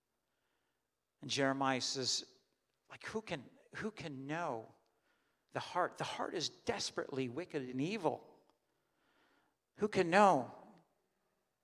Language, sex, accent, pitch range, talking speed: English, male, American, 145-205 Hz, 110 wpm